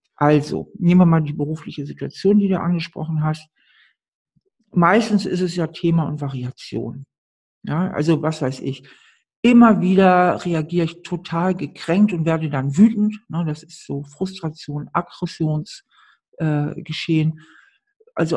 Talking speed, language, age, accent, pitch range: 135 wpm, German, 60-79, German, 150-180 Hz